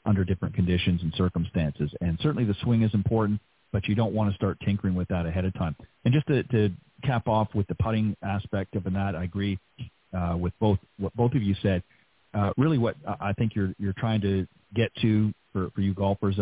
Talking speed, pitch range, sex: 220 wpm, 95-105 Hz, male